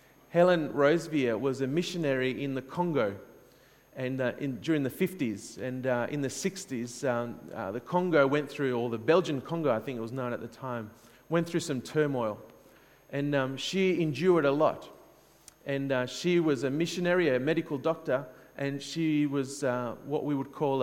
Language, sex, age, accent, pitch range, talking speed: English, male, 30-49, Australian, 125-155 Hz, 185 wpm